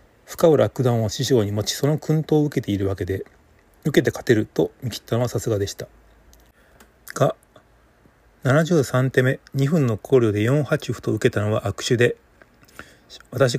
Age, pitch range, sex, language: 30-49, 105-140 Hz, male, Japanese